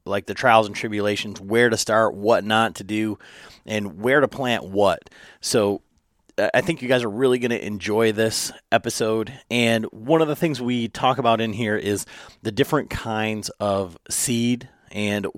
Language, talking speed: English, 180 wpm